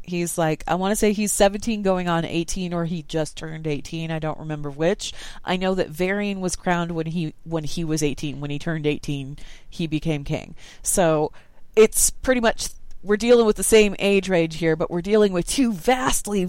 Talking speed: 205 wpm